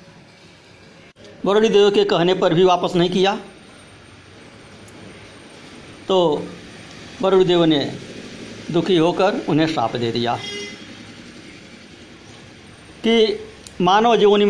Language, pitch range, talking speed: Hindi, 145-190 Hz, 90 wpm